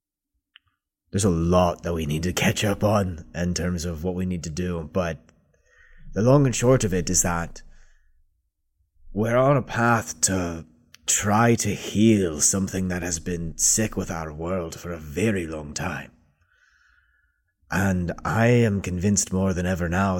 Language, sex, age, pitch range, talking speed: English, male, 30-49, 80-100 Hz, 165 wpm